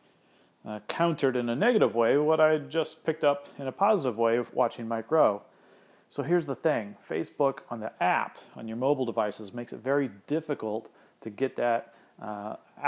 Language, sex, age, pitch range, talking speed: English, male, 40-59, 115-140 Hz, 180 wpm